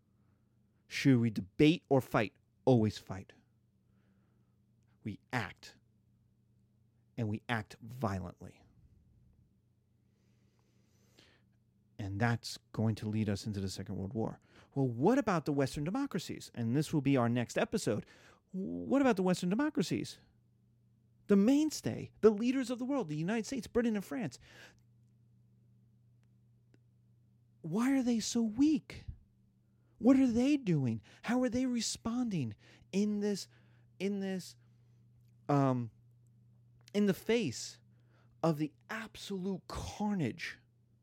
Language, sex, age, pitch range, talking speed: English, male, 40-59, 115-165 Hz, 115 wpm